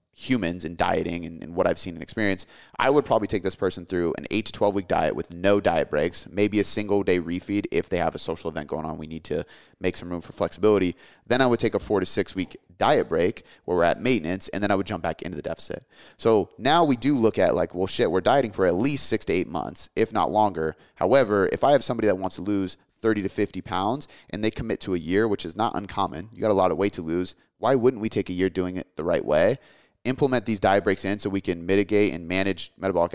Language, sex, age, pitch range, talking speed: English, male, 30-49, 90-105 Hz, 265 wpm